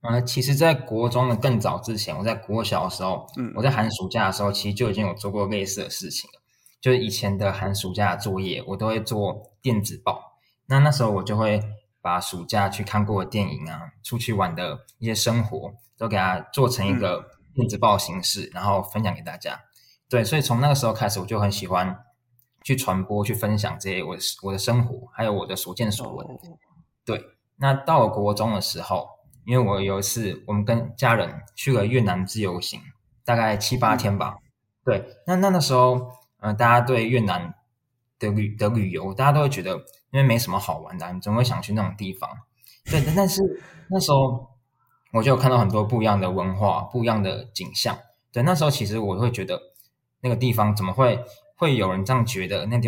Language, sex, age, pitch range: Chinese, male, 20-39, 105-125 Hz